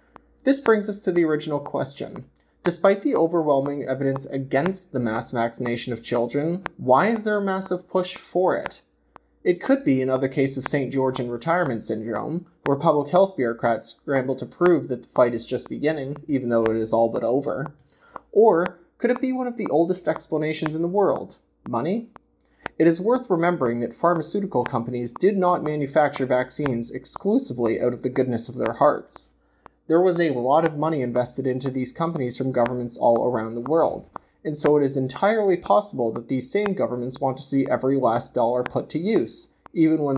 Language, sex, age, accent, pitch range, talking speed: English, male, 30-49, American, 125-170 Hz, 185 wpm